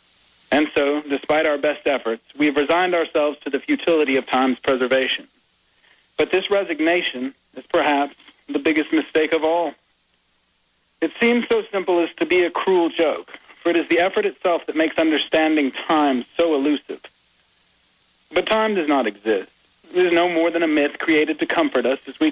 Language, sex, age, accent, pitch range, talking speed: English, male, 40-59, American, 145-170 Hz, 175 wpm